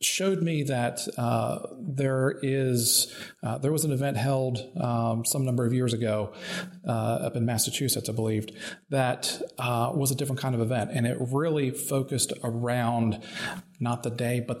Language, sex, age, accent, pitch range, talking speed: English, male, 40-59, American, 115-140 Hz, 170 wpm